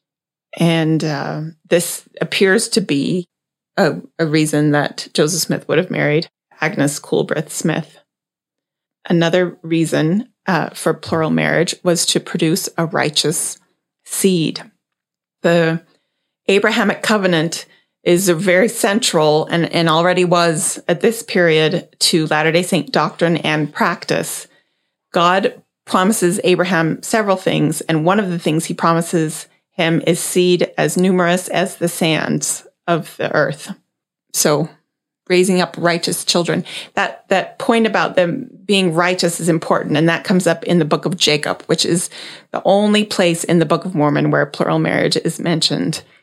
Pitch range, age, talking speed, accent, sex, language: 165-185 Hz, 30-49, 145 wpm, American, female, English